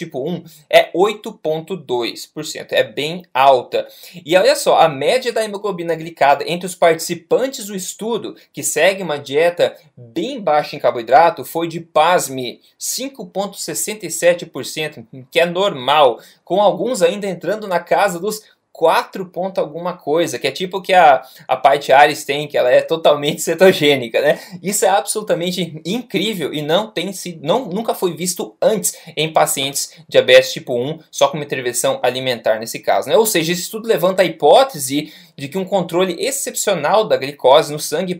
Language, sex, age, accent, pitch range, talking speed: Portuguese, male, 20-39, Brazilian, 150-195 Hz, 155 wpm